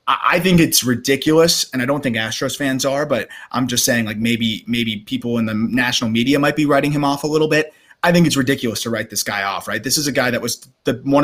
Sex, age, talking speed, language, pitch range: male, 20-39, 260 wpm, English, 120-155 Hz